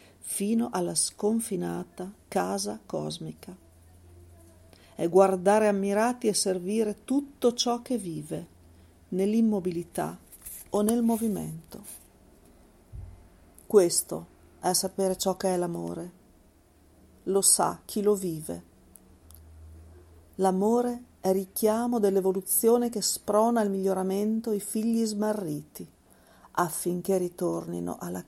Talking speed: 95 wpm